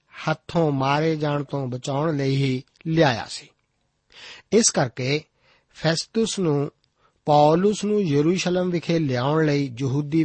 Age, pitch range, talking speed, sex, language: 50-69, 140-170 Hz, 110 wpm, male, Punjabi